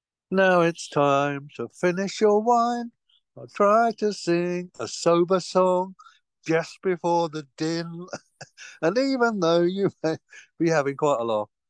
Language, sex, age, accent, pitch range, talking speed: English, male, 60-79, British, 110-170 Hz, 145 wpm